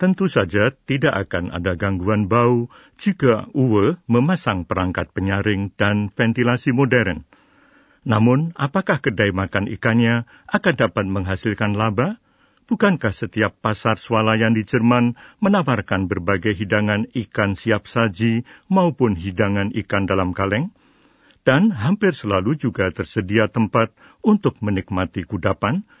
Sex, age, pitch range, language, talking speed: male, 60-79, 100-130 Hz, Indonesian, 115 wpm